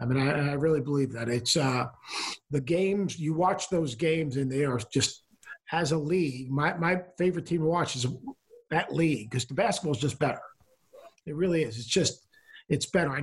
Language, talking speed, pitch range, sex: English, 205 wpm, 130-170 Hz, male